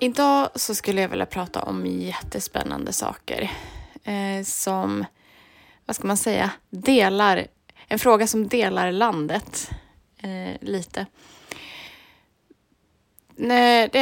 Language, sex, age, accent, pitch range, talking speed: Swedish, female, 20-39, native, 185-235 Hz, 105 wpm